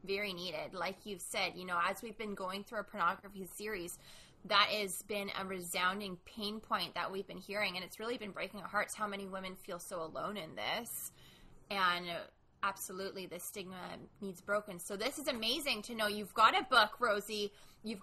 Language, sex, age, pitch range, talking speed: English, female, 20-39, 195-235 Hz, 195 wpm